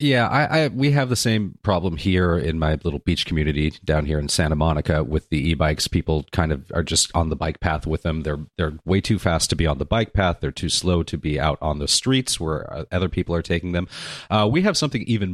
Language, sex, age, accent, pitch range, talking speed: English, male, 40-59, American, 80-110 Hz, 250 wpm